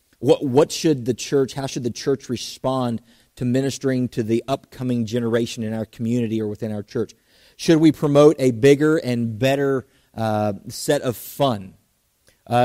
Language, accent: English, American